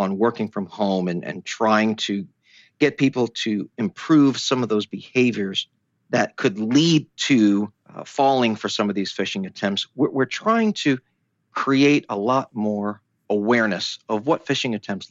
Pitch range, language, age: 105-135 Hz, English, 40-59